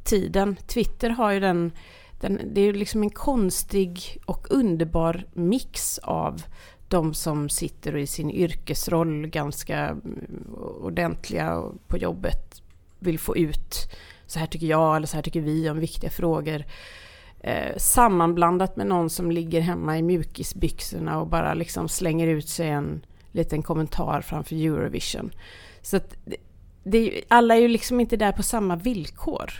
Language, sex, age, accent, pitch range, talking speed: Swedish, female, 30-49, native, 155-210 Hz, 155 wpm